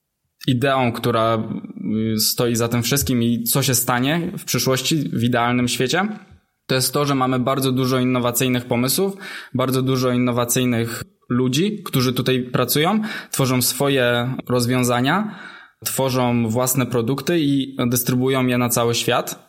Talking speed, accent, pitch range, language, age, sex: 130 wpm, native, 120-135 Hz, Polish, 20-39, male